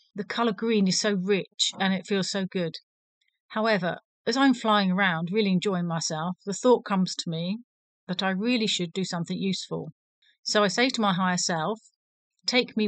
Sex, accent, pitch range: female, British, 185-210 Hz